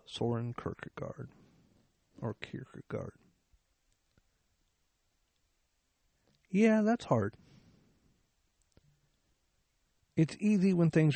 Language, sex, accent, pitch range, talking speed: English, male, American, 115-140 Hz, 60 wpm